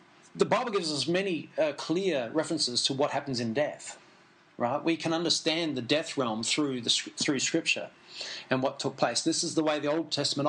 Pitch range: 140-170 Hz